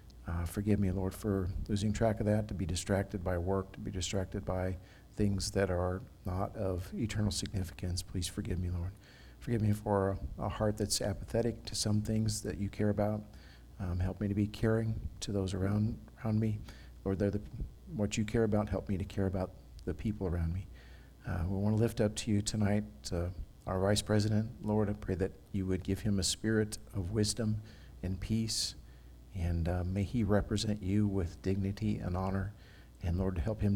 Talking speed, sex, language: 195 wpm, male, English